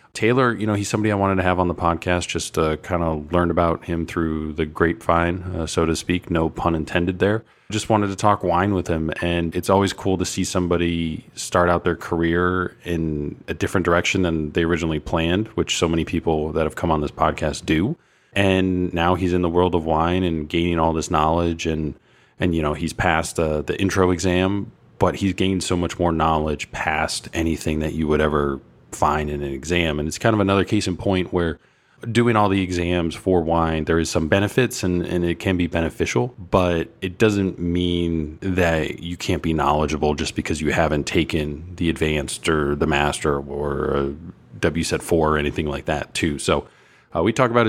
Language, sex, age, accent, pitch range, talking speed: English, male, 30-49, American, 80-95 Hz, 210 wpm